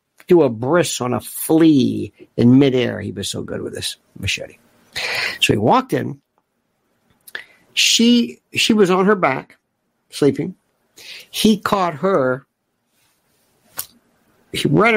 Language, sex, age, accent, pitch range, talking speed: English, male, 60-79, American, 135-190 Hz, 120 wpm